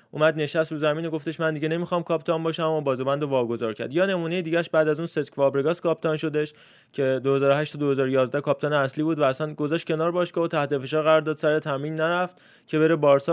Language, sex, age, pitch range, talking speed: Persian, male, 20-39, 140-165 Hz, 205 wpm